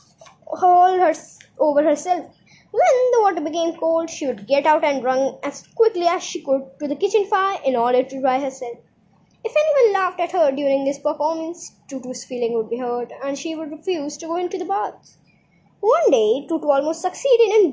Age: 20-39